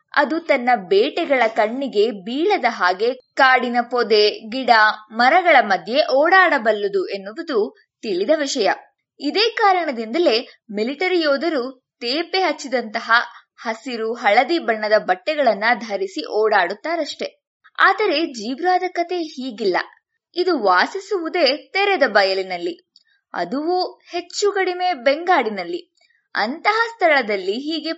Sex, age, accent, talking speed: female, 20-39, native, 90 wpm